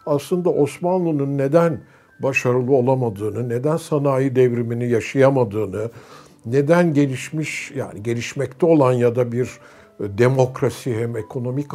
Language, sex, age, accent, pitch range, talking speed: Turkish, male, 60-79, native, 120-180 Hz, 100 wpm